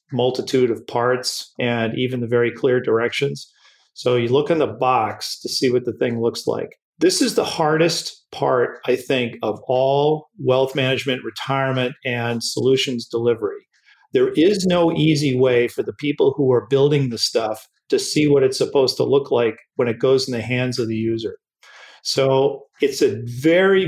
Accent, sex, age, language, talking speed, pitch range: American, male, 40-59, English, 180 wpm, 125-155 Hz